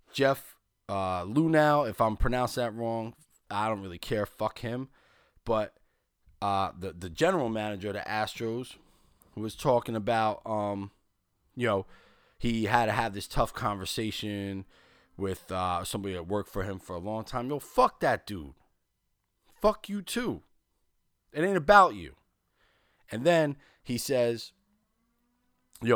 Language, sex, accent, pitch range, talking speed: English, male, American, 105-155 Hz, 150 wpm